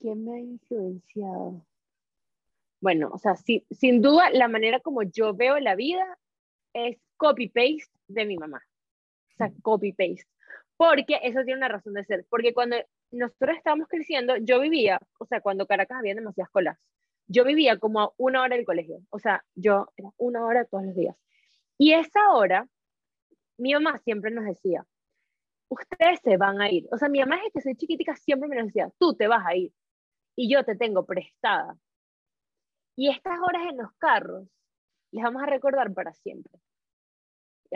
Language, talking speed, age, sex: Spanish, 175 wpm, 20-39, female